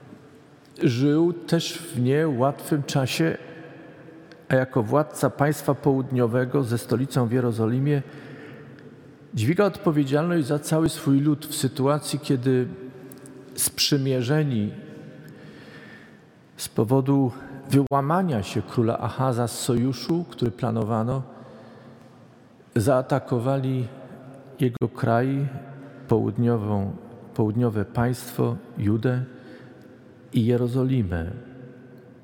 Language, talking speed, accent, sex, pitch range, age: Polish, 80 wpm, native, male, 120-145 Hz, 50-69